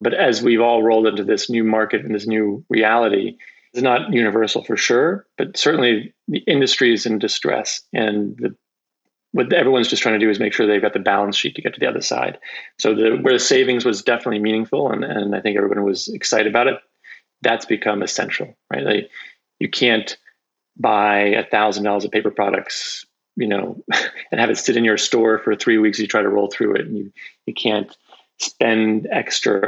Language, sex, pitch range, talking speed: English, male, 105-115 Hz, 200 wpm